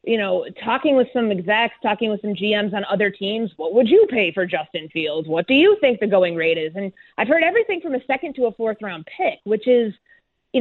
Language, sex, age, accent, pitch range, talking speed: English, female, 30-49, American, 185-240 Hz, 245 wpm